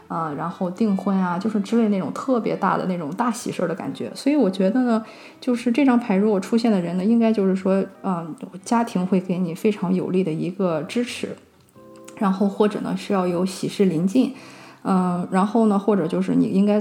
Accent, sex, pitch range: native, female, 185-220 Hz